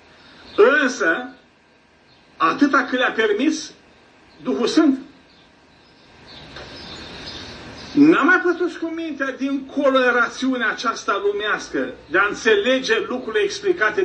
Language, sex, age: Romanian, male, 50-69